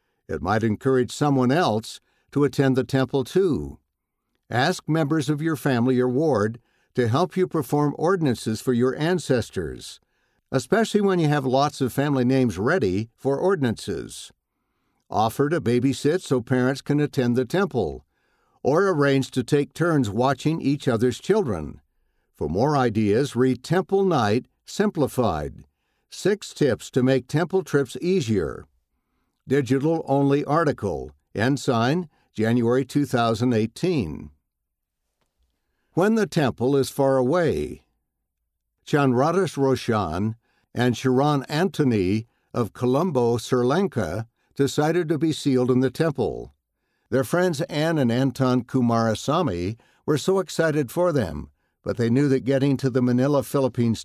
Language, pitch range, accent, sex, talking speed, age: English, 120-150 Hz, American, male, 130 wpm, 60-79